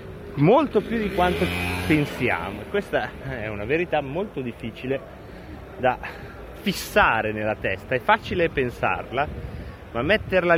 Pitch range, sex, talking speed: 115-170 Hz, male, 115 wpm